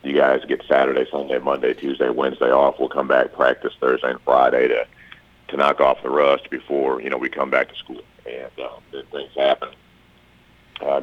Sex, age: male, 40-59